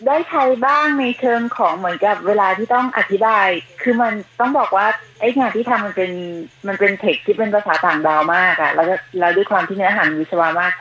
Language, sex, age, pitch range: Thai, female, 30-49, 155-215 Hz